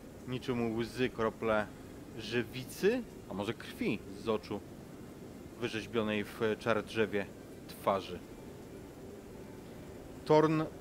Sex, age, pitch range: male, 30-49, 120-140 Hz